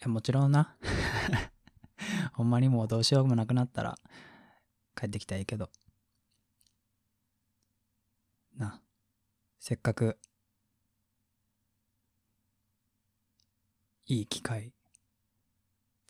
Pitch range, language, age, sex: 105-110 Hz, Japanese, 20-39, male